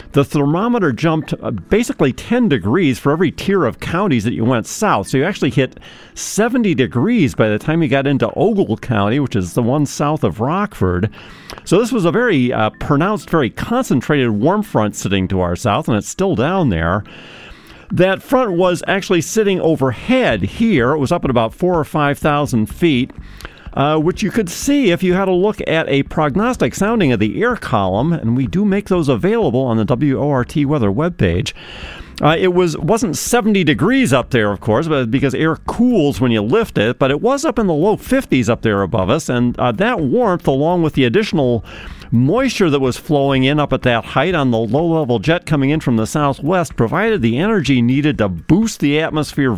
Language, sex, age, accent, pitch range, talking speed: English, male, 50-69, American, 120-185 Hz, 200 wpm